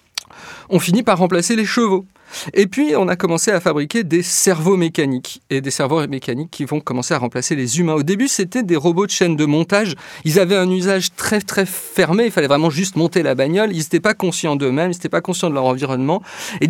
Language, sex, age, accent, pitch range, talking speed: French, male, 40-59, French, 145-190 Hz, 225 wpm